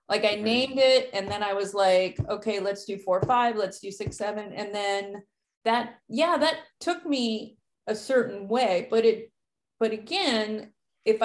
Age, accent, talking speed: 30-49, American, 175 wpm